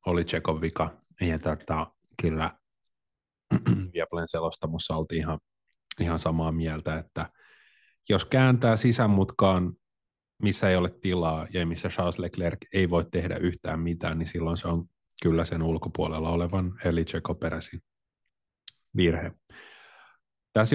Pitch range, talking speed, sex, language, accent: 85-100 Hz, 120 wpm, male, Finnish, native